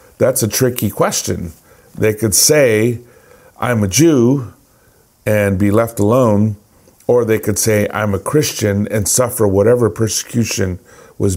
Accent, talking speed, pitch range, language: American, 135 wpm, 100-115 Hz, English